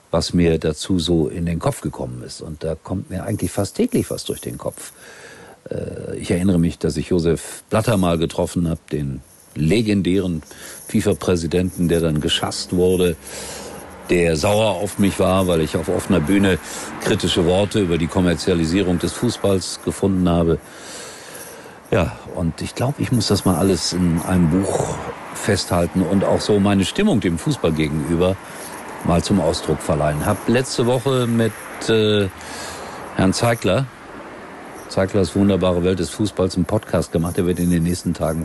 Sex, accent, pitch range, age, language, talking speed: male, German, 85-100 Hz, 50-69, German, 160 wpm